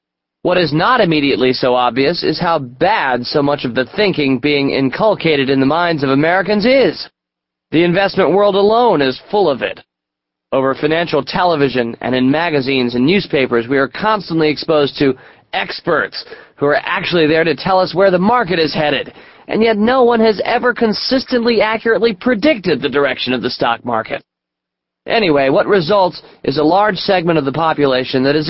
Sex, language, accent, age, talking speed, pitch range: male, English, American, 30-49, 175 wpm, 130-190 Hz